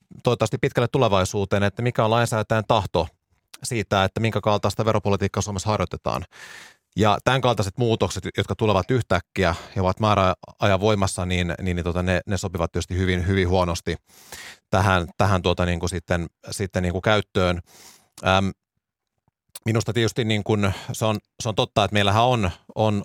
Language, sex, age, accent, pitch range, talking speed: Finnish, male, 30-49, native, 95-105 Hz, 155 wpm